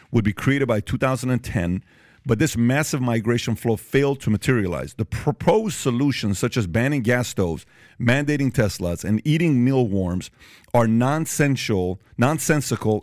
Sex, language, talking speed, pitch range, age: male, English, 135 wpm, 105-130 Hz, 40-59